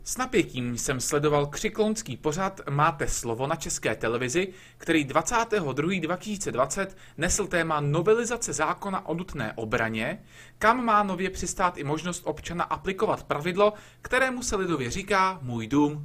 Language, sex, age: Czech, male, 30-49